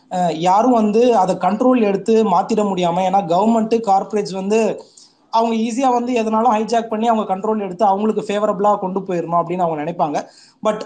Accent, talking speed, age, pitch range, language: native, 150 wpm, 20-39, 175-225 Hz, Tamil